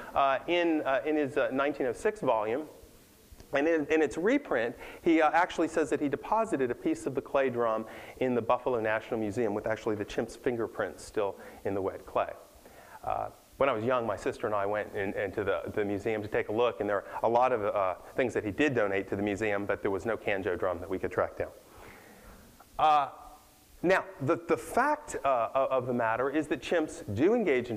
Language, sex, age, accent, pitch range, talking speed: English, male, 30-49, American, 115-155 Hz, 220 wpm